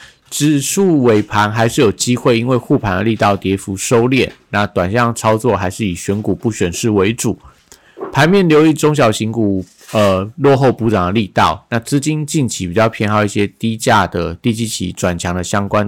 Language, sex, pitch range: Chinese, male, 100-125 Hz